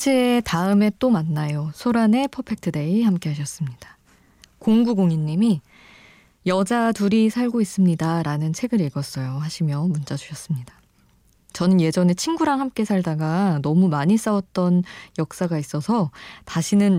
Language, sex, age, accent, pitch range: Korean, female, 20-39, native, 155-220 Hz